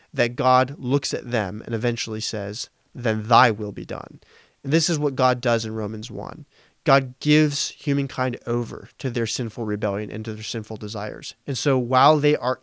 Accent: American